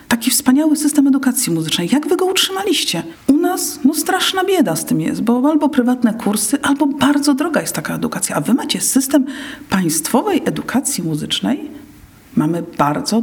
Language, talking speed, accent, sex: Polish, 160 wpm, native, female